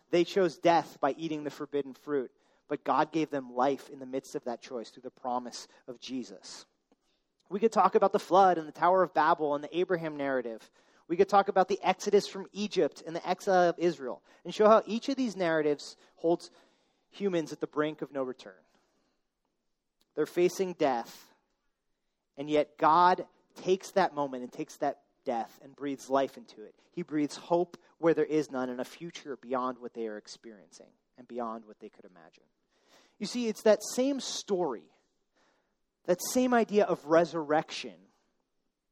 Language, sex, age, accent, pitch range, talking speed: English, male, 30-49, American, 145-195 Hz, 180 wpm